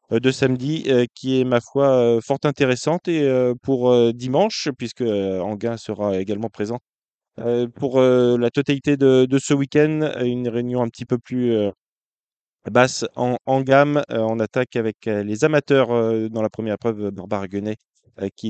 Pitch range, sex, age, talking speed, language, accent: 110-135 Hz, male, 20-39, 140 wpm, French, French